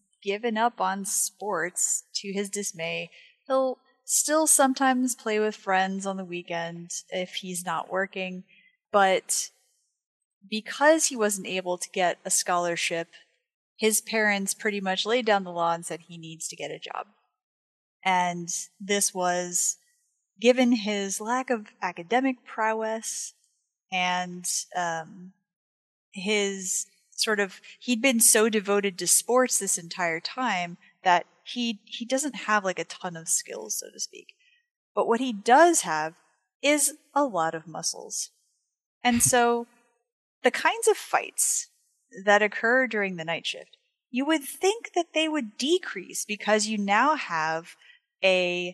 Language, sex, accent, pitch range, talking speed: English, female, American, 180-255 Hz, 140 wpm